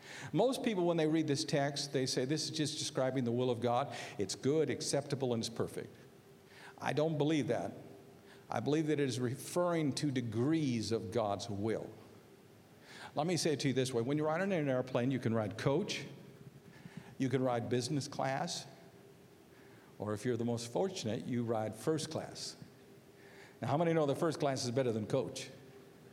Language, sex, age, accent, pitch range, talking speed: English, male, 50-69, American, 120-155 Hz, 190 wpm